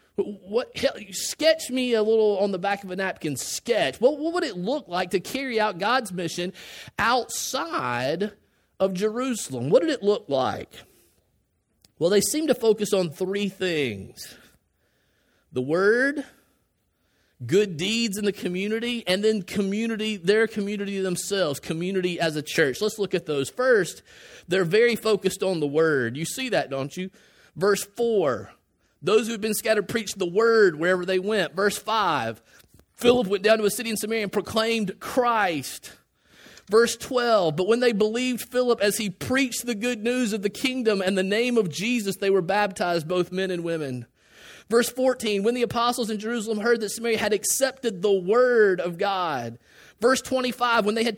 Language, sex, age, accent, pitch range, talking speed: English, male, 30-49, American, 185-230 Hz, 170 wpm